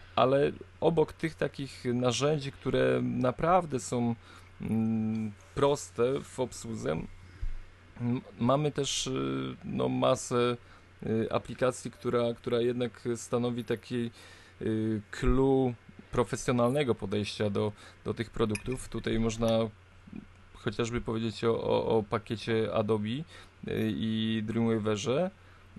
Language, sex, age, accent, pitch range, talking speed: Polish, male, 20-39, native, 105-135 Hz, 85 wpm